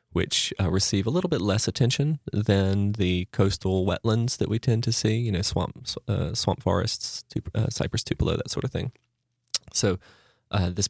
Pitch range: 95-115 Hz